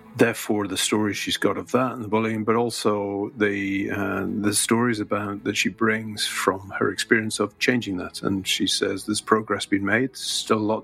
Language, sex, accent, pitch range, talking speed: English, male, British, 100-110 Hz, 200 wpm